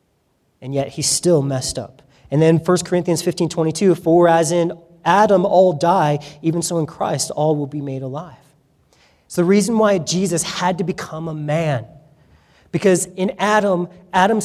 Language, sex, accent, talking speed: English, male, American, 170 wpm